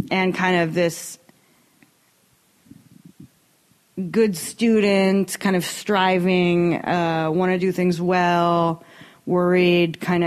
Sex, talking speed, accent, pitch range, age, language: female, 100 wpm, American, 165-185 Hz, 30-49, English